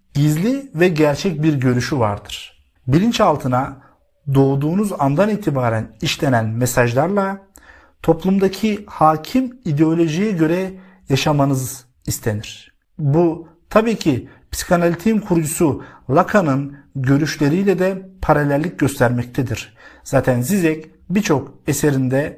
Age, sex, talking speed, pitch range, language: 50-69, male, 85 wpm, 130-180 Hz, Turkish